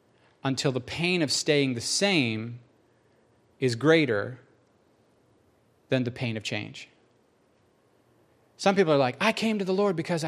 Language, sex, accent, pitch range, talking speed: English, male, American, 115-165 Hz, 140 wpm